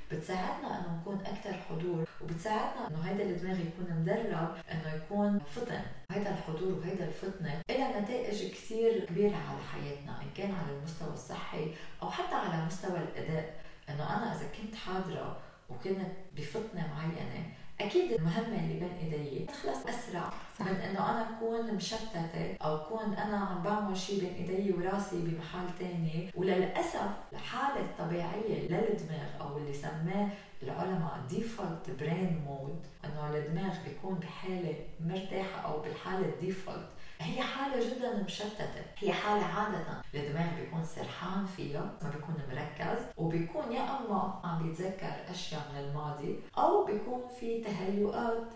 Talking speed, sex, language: 135 wpm, female, Arabic